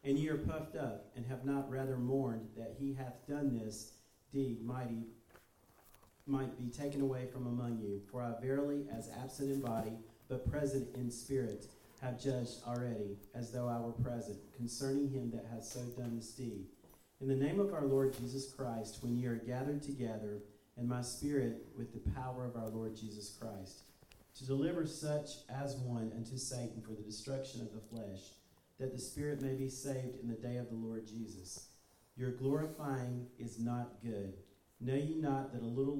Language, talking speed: English, 185 wpm